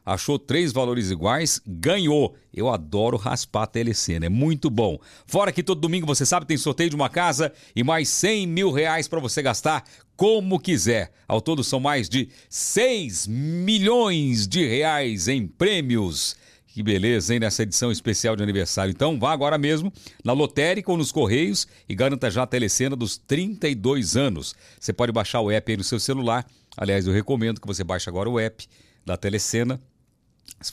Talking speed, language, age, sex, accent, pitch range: 180 wpm, Portuguese, 60-79, male, Brazilian, 105-150 Hz